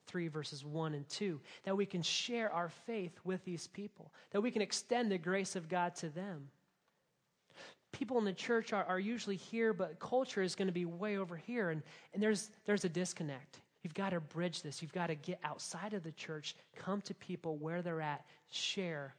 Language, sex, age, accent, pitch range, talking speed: English, male, 30-49, American, 175-220 Hz, 210 wpm